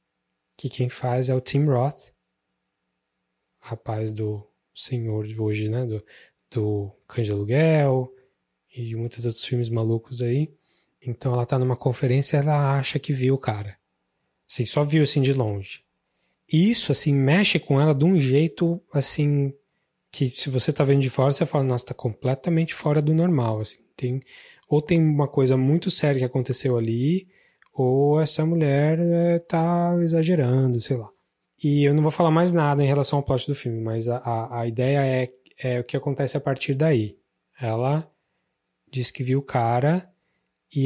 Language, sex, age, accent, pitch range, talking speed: Portuguese, male, 20-39, Brazilian, 120-150 Hz, 170 wpm